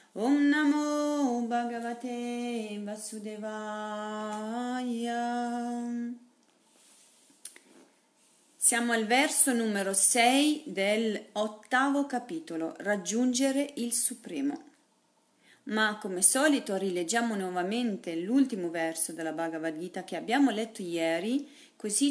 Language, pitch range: Italian, 190-255 Hz